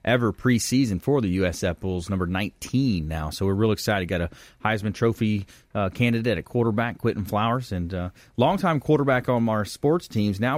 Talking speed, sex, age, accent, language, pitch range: 180 wpm, male, 30-49, American, English, 105-135 Hz